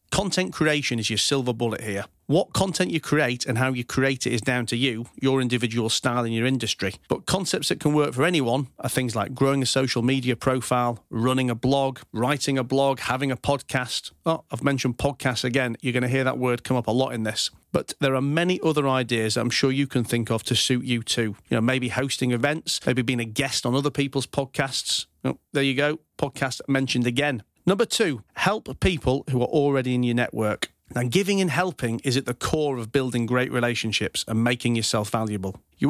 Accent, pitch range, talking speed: British, 115-140 Hz, 215 wpm